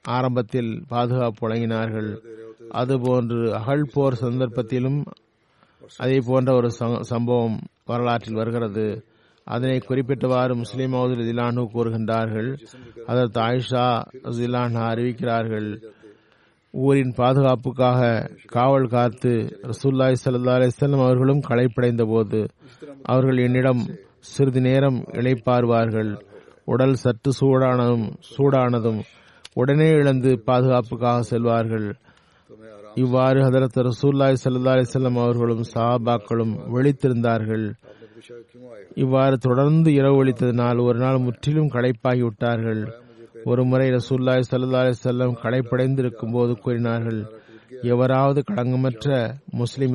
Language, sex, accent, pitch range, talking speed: Tamil, male, native, 115-130 Hz, 70 wpm